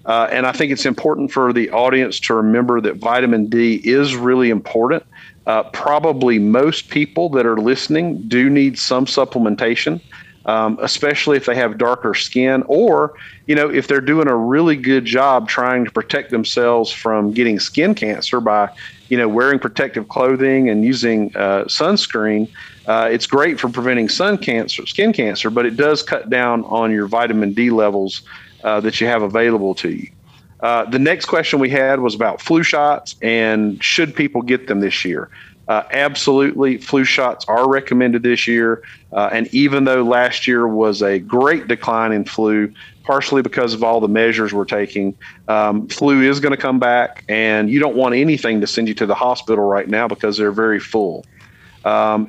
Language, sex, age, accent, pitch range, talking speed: English, male, 40-59, American, 110-135 Hz, 180 wpm